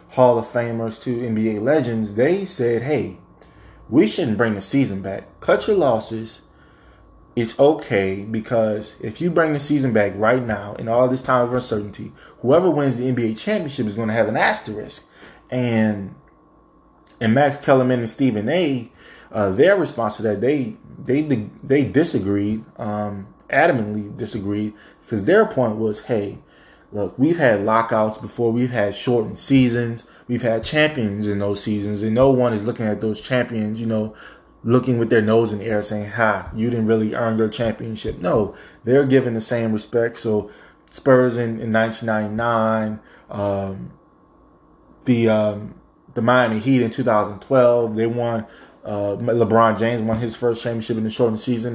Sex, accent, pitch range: male, American, 110-125 Hz